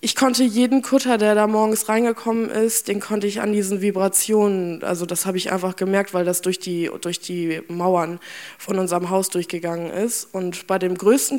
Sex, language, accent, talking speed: female, German, German, 195 wpm